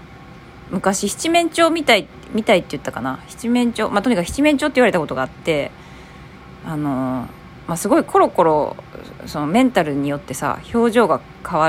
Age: 20-39